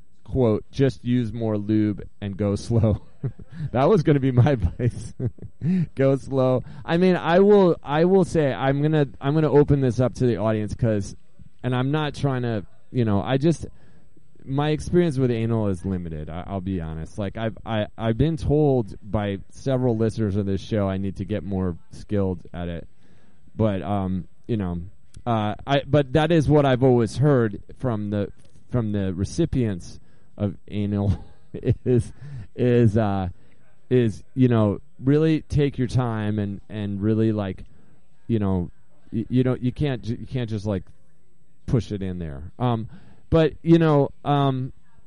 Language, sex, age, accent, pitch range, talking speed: English, male, 20-39, American, 100-135 Hz, 170 wpm